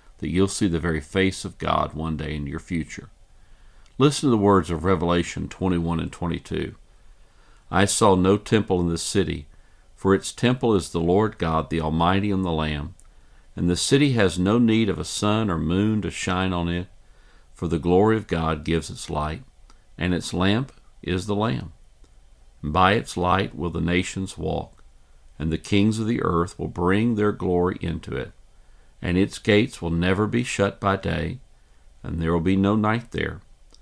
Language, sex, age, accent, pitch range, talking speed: English, male, 50-69, American, 80-100 Hz, 185 wpm